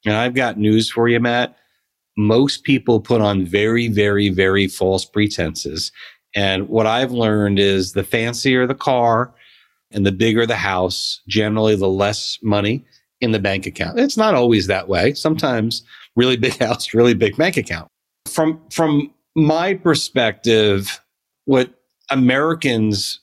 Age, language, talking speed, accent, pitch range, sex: 40-59, English, 145 wpm, American, 105-130 Hz, male